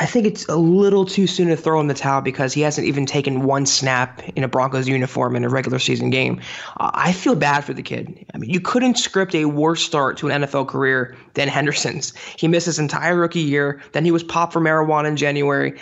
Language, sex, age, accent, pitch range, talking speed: English, male, 20-39, American, 140-175 Hz, 240 wpm